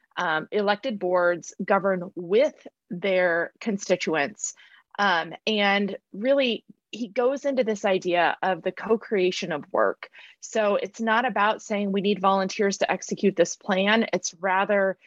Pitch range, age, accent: 190-225 Hz, 30-49, American